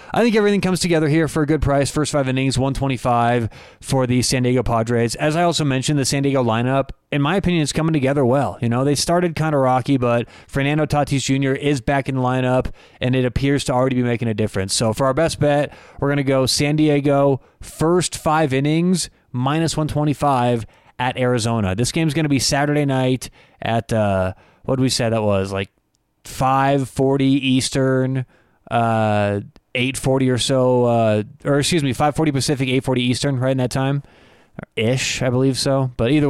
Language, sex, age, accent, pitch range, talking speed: English, male, 30-49, American, 120-145 Hz, 195 wpm